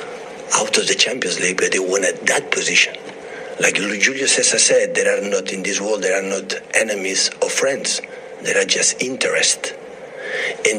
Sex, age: male, 50-69